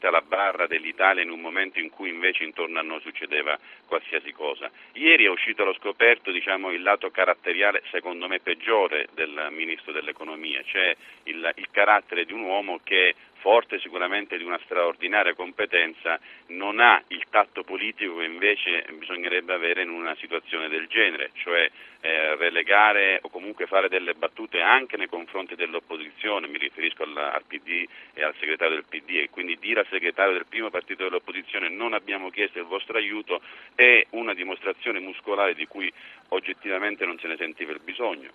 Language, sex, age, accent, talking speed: Italian, male, 40-59, native, 165 wpm